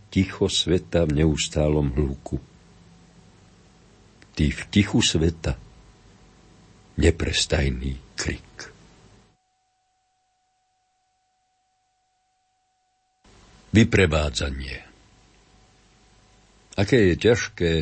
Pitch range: 80-105 Hz